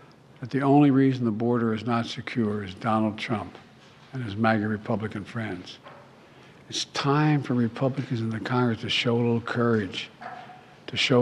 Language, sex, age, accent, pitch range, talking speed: English, male, 60-79, American, 115-130 Hz, 165 wpm